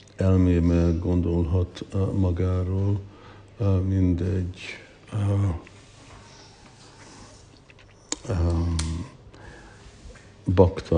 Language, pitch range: Hungarian, 90-100 Hz